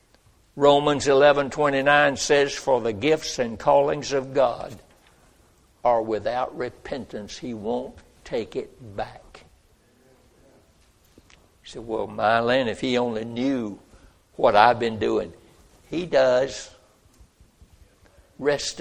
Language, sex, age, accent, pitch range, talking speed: English, male, 60-79, American, 110-145 Hz, 115 wpm